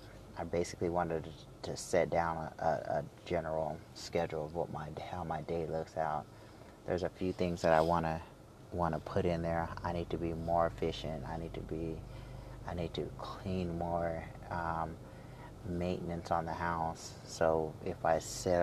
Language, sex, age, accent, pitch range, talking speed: English, male, 30-49, American, 80-100 Hz, 175 wpm